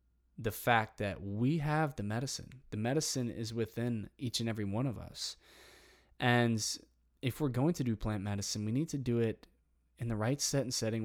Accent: American